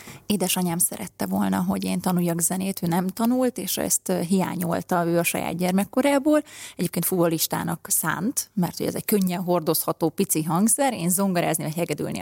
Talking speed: 155 wpm